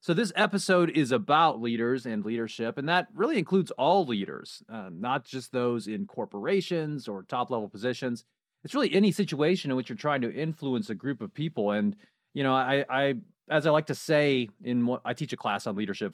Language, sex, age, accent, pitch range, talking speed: English, male, 30-49, American, 120-170 Hz, 200 wpm